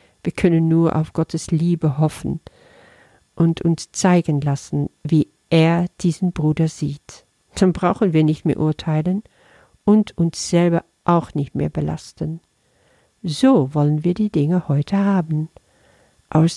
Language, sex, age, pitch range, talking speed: German, female, 50-69, 140-180 Hz, 135 wpm